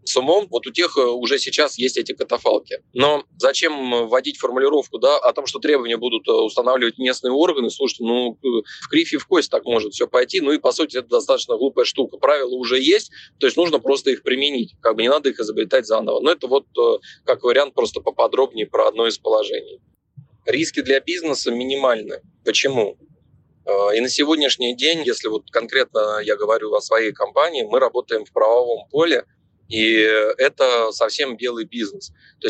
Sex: male